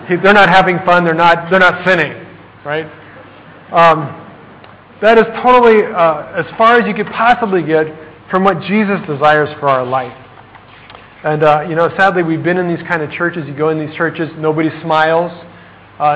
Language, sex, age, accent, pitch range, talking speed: English, male, 40-59, American, 140-185 Hz, 180 wpm